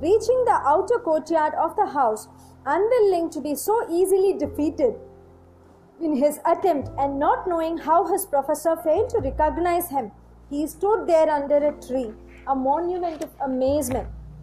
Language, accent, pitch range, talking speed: Tamil, native, 275-375 Hz, 150 wpm